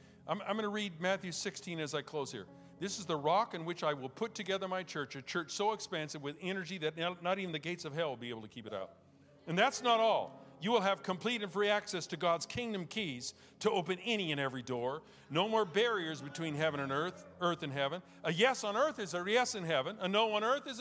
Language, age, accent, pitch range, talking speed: English, 50-69, American, 155-210 Hz, 250 wpm